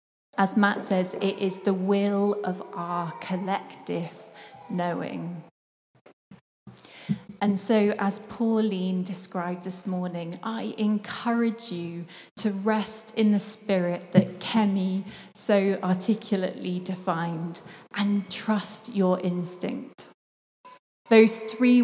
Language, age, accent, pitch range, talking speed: English, 20-39, British, 180-210 Hz, 100 wpm